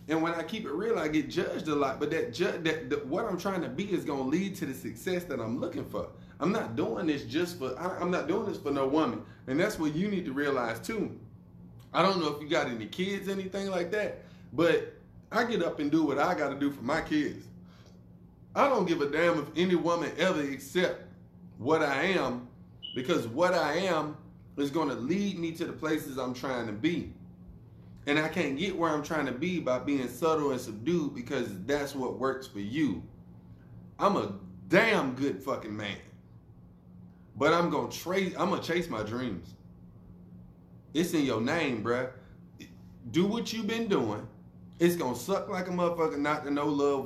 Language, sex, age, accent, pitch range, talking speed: English, male, 20-39, American, 120-170 Hz, 205 wpm